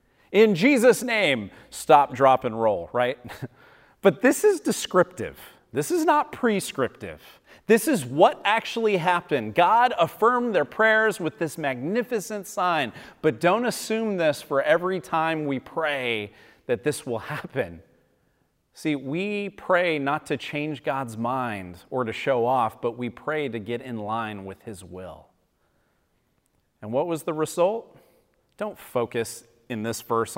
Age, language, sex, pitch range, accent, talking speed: 30-49, English, male, 120-195 Hz, American, 145 wpm